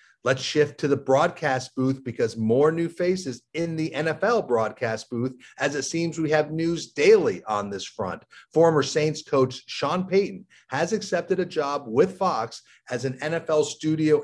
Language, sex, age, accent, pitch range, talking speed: English, male, 40-59, American, 130-170 Hz, 170 wpm